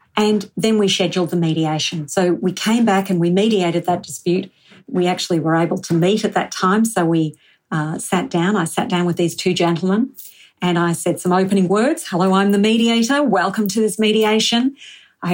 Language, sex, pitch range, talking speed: English, female, 175-210 Hz, 200 wpm